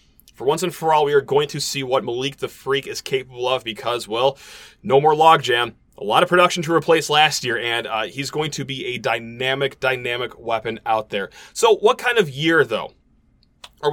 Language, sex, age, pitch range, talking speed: English, male, 30-49, 135-200 Hz, 210 wpm